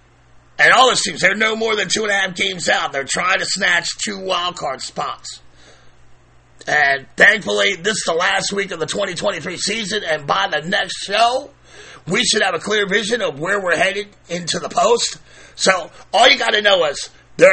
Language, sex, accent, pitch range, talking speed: English, male, American, 155-200 Hz, 200 wpm